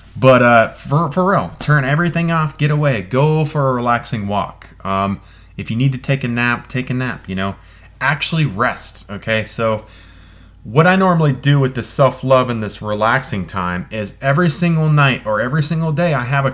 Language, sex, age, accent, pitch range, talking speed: English, male, 20-39, American, 95-120 Hz, 195 wpm